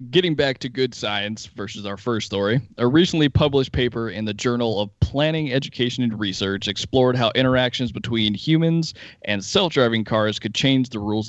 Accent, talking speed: American, 175 wpm